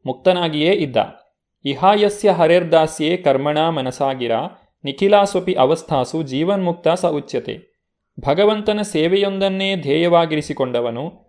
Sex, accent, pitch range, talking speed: male, native, 140-185 Hz, 75 wpm